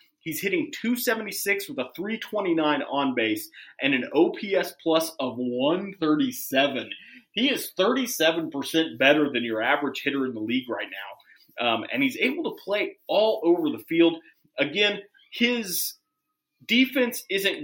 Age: 30-49